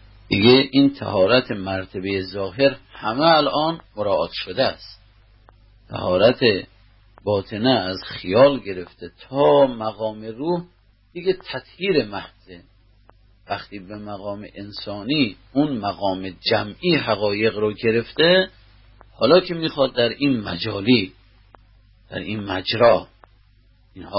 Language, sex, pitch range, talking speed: Persian, male, 100-130 Hz, 100 wpm